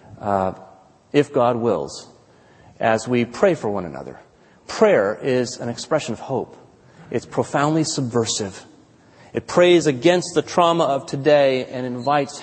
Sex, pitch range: male, 115-150 Hz